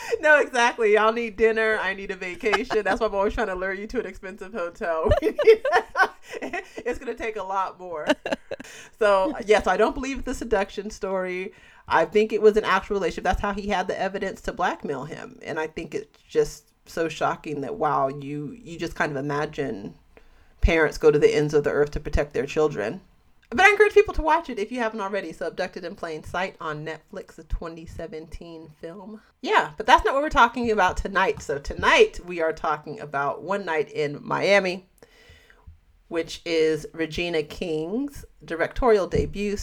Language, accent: English, American